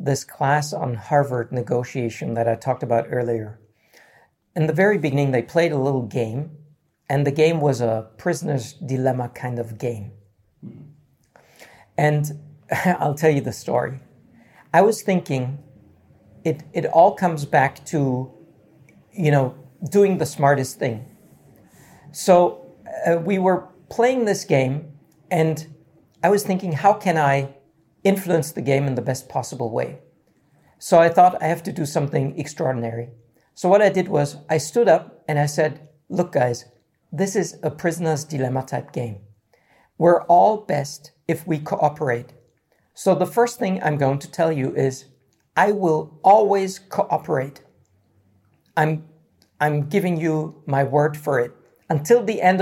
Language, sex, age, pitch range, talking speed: English, male, 50-69, 130-170 Hz, 150 wpm